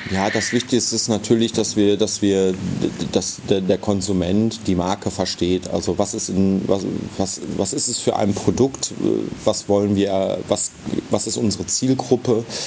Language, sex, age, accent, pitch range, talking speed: German, male, 30-49, German, 95-110 Hz, 165 wpm